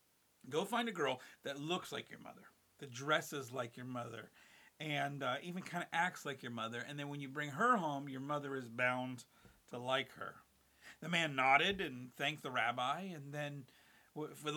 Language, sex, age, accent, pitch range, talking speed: English, male, 40-59, American, 130-180 Hz, 195 wpm